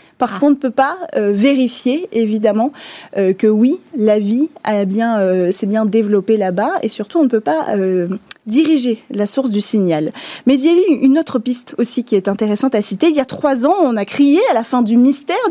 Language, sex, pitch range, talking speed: French, female, 220-300 Hz, 215 wpm